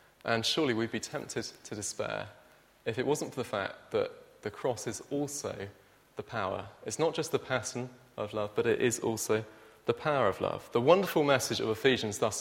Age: 30-49